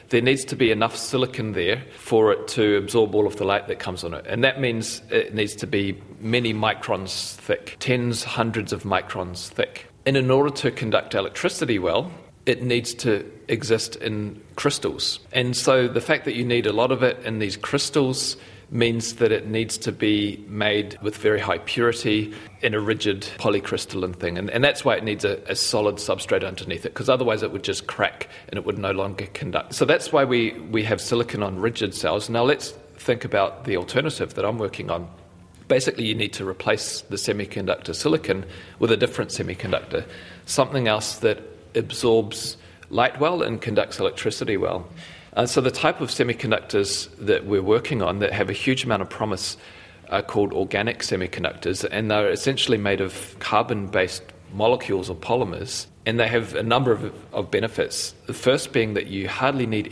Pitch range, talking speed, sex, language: 100-120 Hz, 190 wpm, male, English